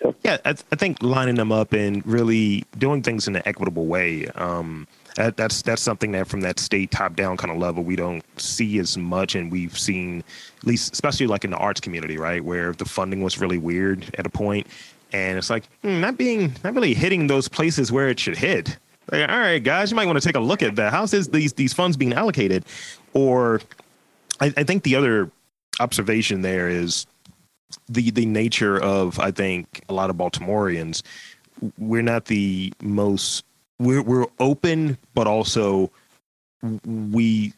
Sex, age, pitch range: male, 30-49, 95-120 Hz